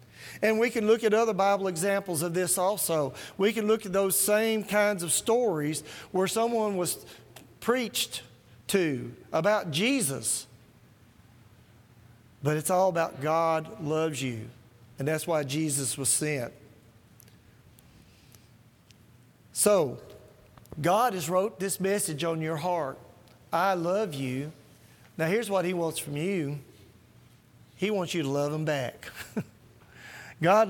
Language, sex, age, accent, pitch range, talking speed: English, male, 40-59, American, 120-185 Hz, 130 wpm